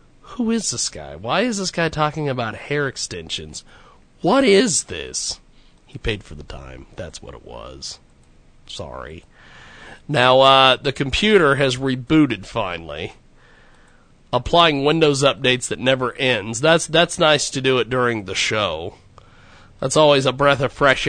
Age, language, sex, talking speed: 40-59, English, male, 150 wpm